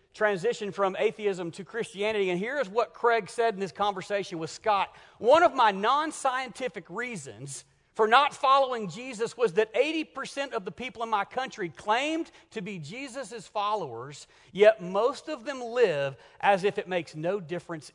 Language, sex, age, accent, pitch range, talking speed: English, male, 40-59, American, 175-250 Hz, 165 wpm